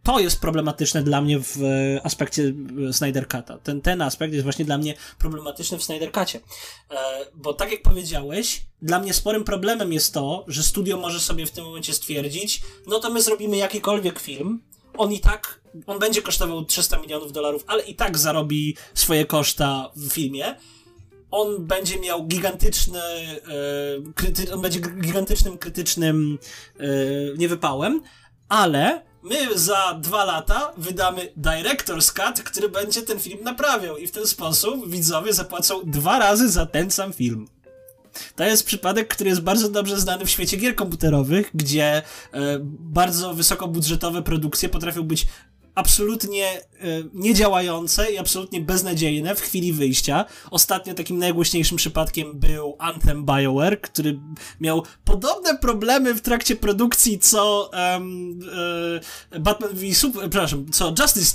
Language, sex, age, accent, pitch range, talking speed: Polish, male, 20-39, native, 150-200 Hz, 145 wpm